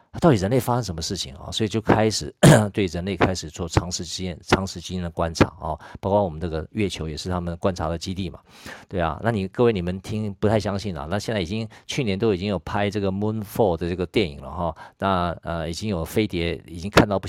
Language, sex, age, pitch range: Chinese, male, 50-69, 90-115 Hz